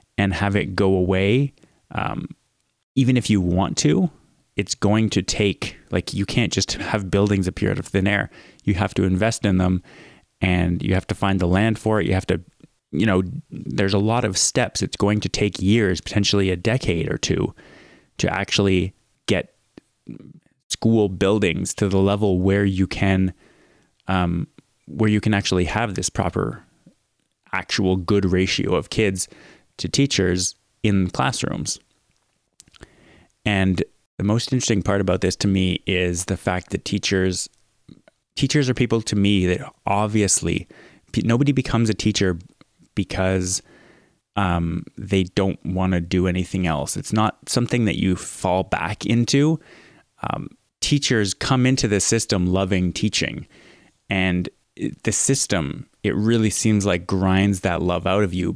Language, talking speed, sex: English, 155 wpm, male